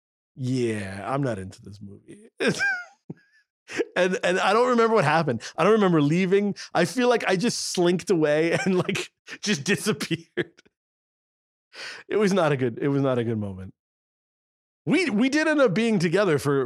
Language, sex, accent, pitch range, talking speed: English, male, American, 125-210 Hz, 170 wpm